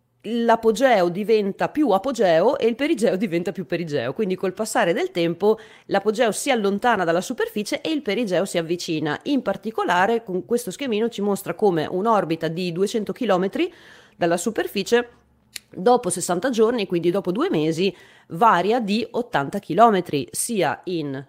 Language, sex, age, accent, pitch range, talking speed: Italian, female, 30-49, native, 165-220 Hz, 145 wpm